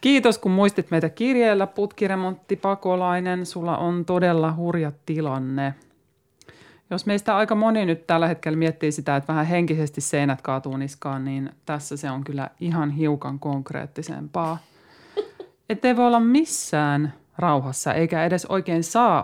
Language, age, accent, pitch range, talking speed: Finnish, 30-49, native, 145-195 Hz, 135 wpm